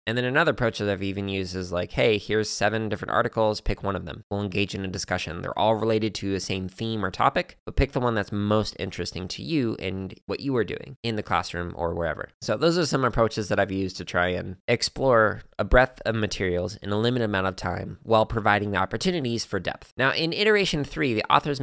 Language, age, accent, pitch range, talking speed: English, 20-39, American, 95-120 Hz, 240 wpm